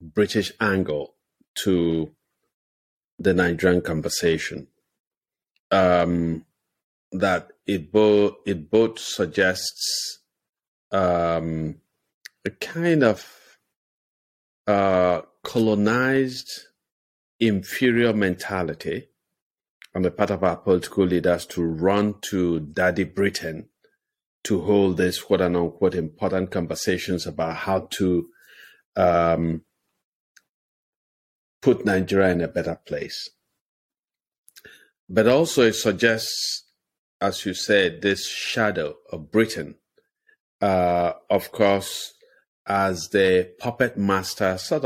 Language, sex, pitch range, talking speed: English, male, 85-105 Hz, 95 wpm